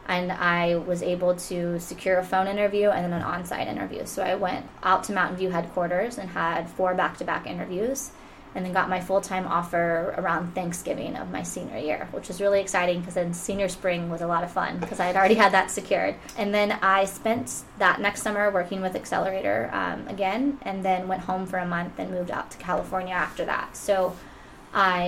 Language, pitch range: English, 175-195 Hz